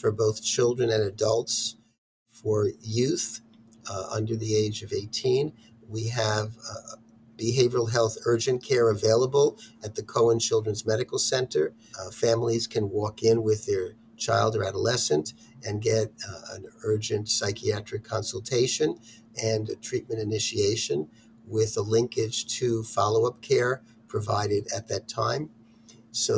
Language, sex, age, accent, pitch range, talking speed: English, male, 50-69, American, 110-115 Hz, 130 wpm